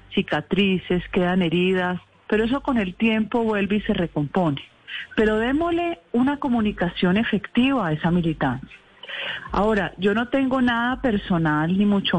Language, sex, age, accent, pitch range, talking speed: Spanish, female, 40-59, Colombian, 175-225 Hz, 140 wpm